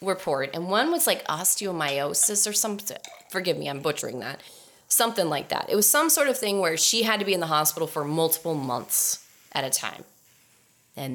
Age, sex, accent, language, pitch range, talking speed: 30-49, female, American, English, 150-205 Hz, 200 wpm